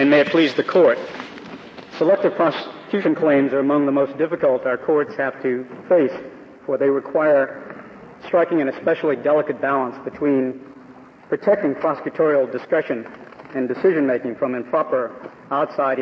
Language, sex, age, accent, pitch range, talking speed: English, male, 50-69, American, 135-175 Hz, 135 wpm